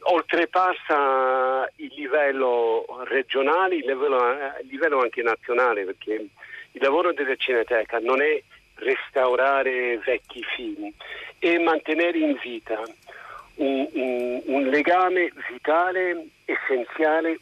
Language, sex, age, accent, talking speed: Italian, male, 50-69, native, 105 wpm